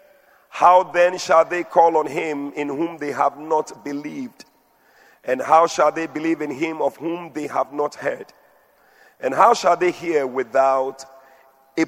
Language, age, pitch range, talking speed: English, 40-59, 135-170 Hz, 165 wpm